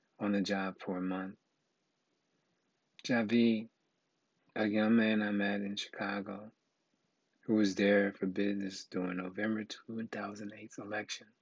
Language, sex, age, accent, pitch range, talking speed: English, male, 30-49, American, 100-115 Hz, 120 wpm